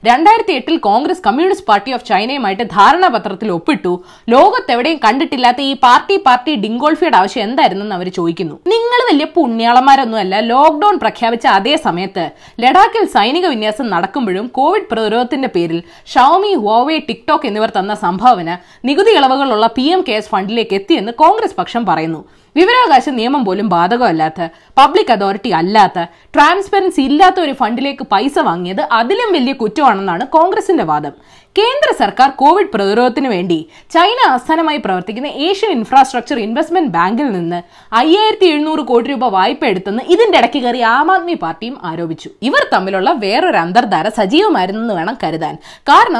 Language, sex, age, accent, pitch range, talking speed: Malayalam, female, 20-39, native, 210-330 Hz, 125 wpm